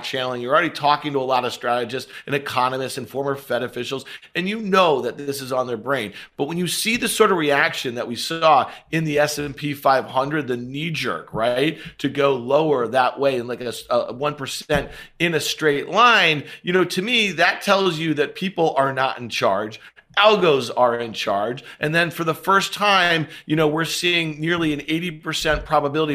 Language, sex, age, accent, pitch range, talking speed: English, male, 40-59, American, 135-165 Hz, 200 wpm